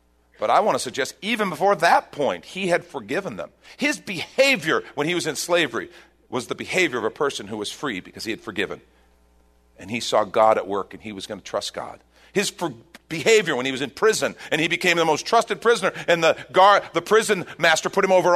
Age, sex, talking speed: 40-59, male, 220 wpm